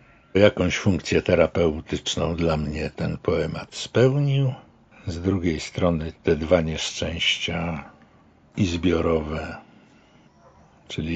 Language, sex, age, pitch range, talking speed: Polish, male, 60-79, 85-105 Hz, 90 wpm